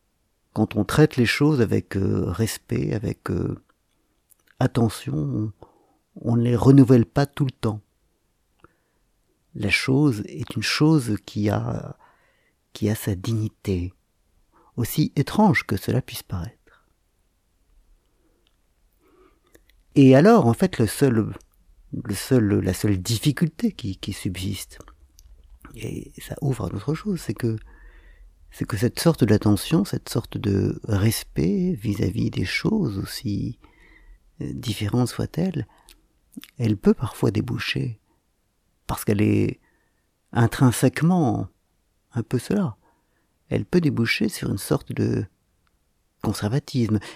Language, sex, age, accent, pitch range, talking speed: French, male, 50-69, French, 95-130 Hz, 115 wpm